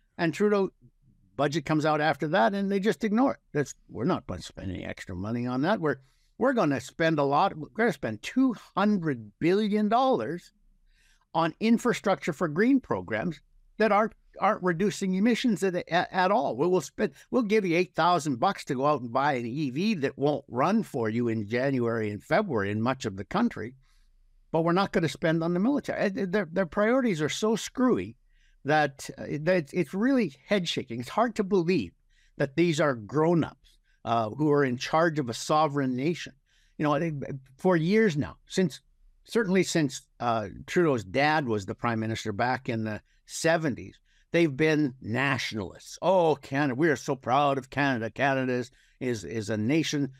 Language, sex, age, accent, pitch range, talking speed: English, male, 60-79, American, 130-185 Hz, 185 wpm